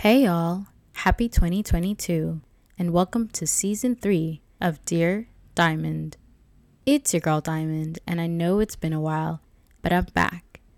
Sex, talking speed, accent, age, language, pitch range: female, 145 wpm, American, 10-29, English, 120-195 Hz